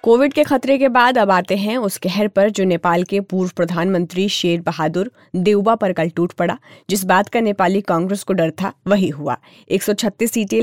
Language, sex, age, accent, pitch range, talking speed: Hindi, female, 20-39, native, 175-220 Hz, 200 wpm